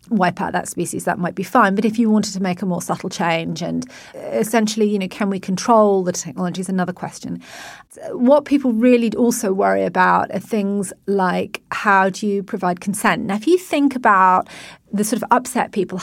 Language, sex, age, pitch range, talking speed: English, female, 30-49, 185-225 Hz, 200 wpm